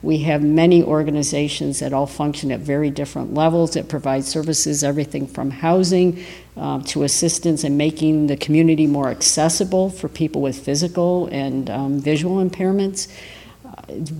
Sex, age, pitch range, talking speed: female, 50-69, 140-160 Hz, 150 wpm